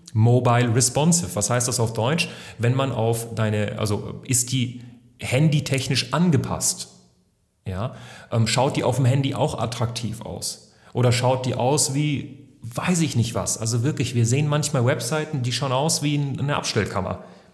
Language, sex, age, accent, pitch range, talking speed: German, male, 30-49, German, 110-135 Hz, 160 wpm